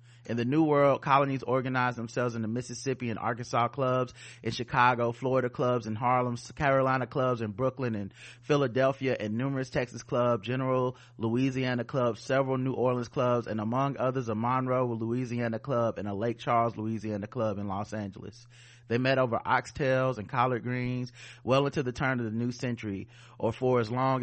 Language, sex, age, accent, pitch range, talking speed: English, male, 30-49, American, 110-125 Hz, 175 wpm